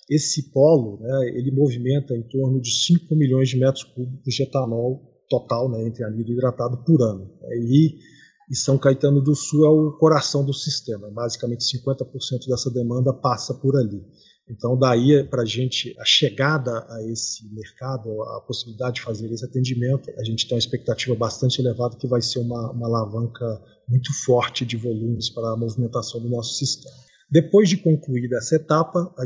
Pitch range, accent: 115-135 Hz, Brazilian